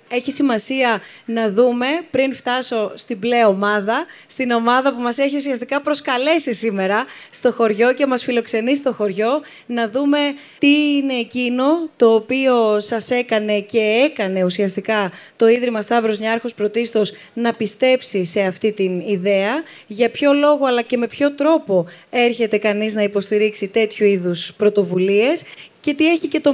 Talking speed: 150 wpm